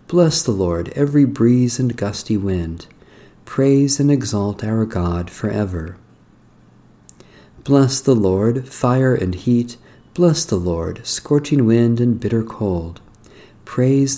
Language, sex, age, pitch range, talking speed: English, male, 50-69, 100-130 Hz, 125 wpm